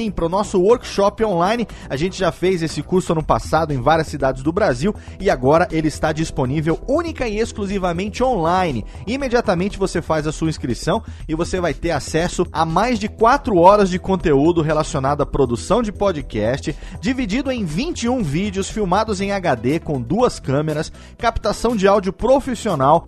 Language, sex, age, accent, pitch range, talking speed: Portuguese, male, 30-49, Brazilian, 165-220 Hz, 165 wpm